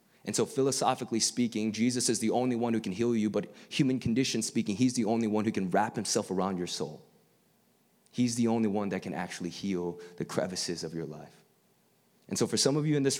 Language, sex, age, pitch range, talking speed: English, male, 20-39, 95-130 Hz, 225 wpm